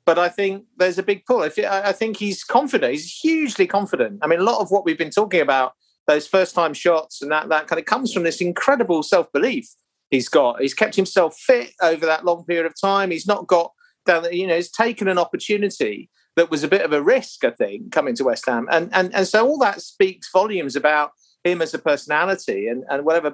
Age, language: 50-69, English